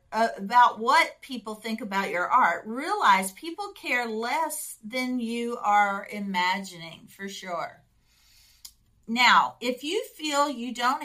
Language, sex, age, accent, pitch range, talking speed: English, female, 50-69, American, 200-255 Hz, 130 wpm